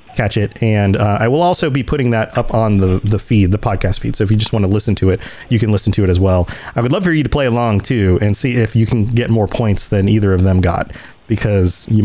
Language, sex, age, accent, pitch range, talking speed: English, male, 30-49, American, 105-150 Hz, 290 wpm